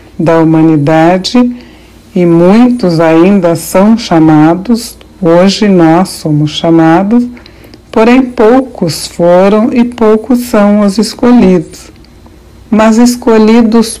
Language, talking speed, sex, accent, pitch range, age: Portuguese, 90 wpm, male, Brazilian, 165-205 Hz, 60-79